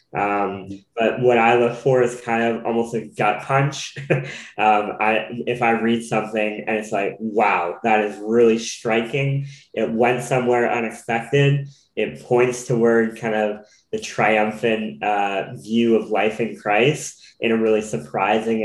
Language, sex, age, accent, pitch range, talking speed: English, male, 10-29, American, 105-120 Hz, 155 wpm